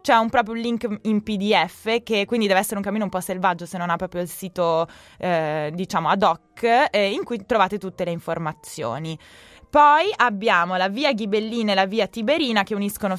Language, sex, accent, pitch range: Italian, female, native, 180-220 Hz